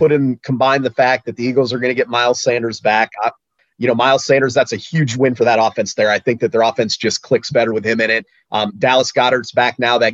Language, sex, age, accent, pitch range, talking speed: English, male, 30-49, American, 115-135 Hz, 270 wpm